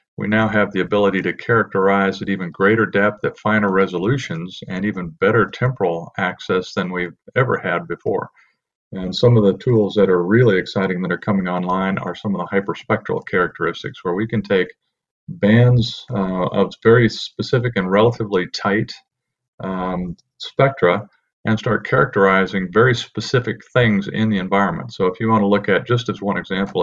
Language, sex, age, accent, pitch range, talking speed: English, male, 50-69, American, 90-110 Hz, 170 wpm